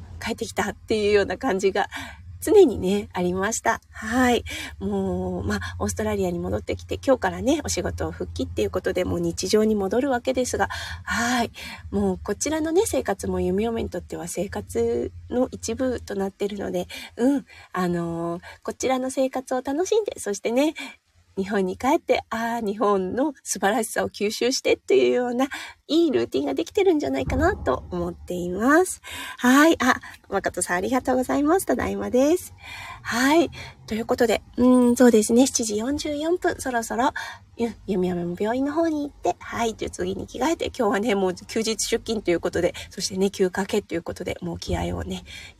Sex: female